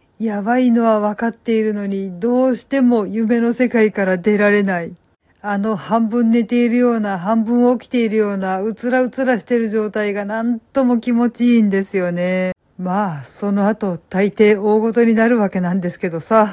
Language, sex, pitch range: Japanese, female, 190-230 Hz